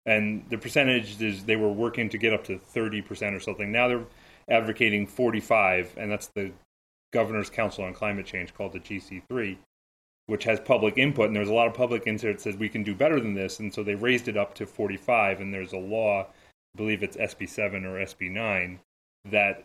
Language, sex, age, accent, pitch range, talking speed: English, male, 30-49, American, 95-120 Hz, 205 wpm